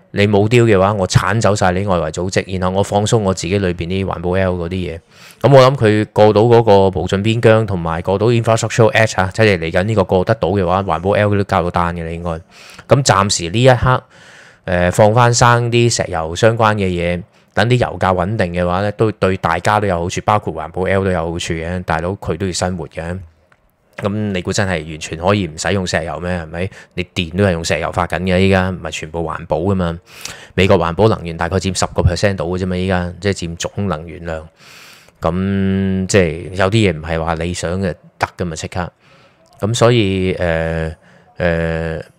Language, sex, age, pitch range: Chinese, male, 20-39, 90-105 Hz